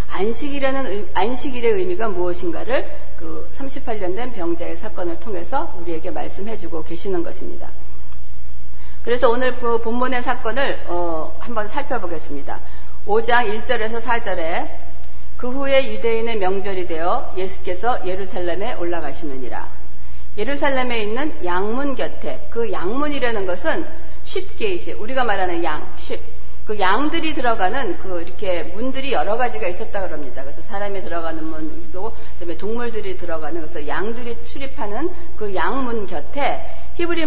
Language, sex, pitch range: Korean, female, 180-275 Hz